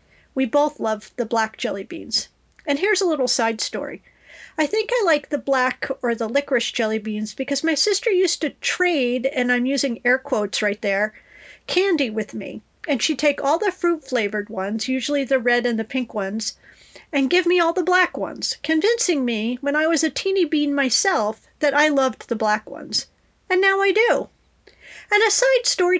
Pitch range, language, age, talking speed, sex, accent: 235-315 Hz, English, 40-59, 195 wpm, female, American